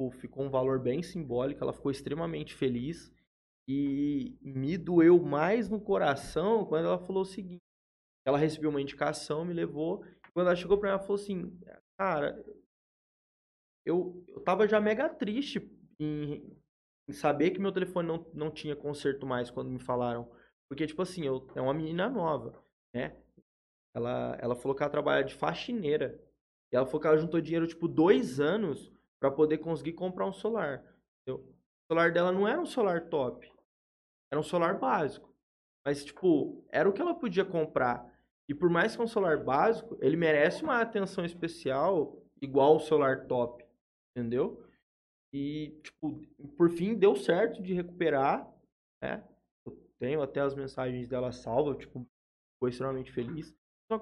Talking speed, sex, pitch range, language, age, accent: 160 wpm, male, 135-190 Hz, Portuguese, 20-39, Brazilian